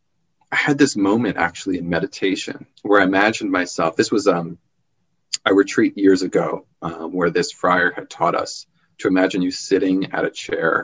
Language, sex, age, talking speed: English, male, 30-49, 175 wpm